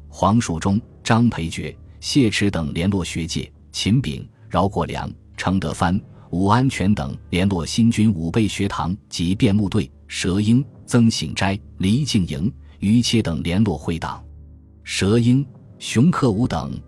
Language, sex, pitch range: Chinese, male, 85-115 Hz